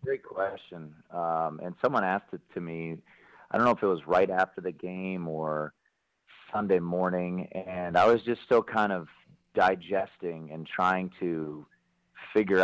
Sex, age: male, 30-49